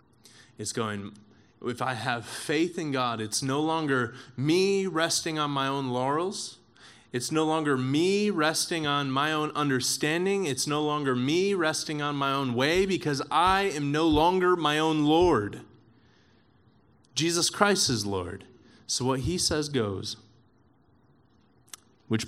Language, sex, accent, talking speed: English, male, American, 145 wpm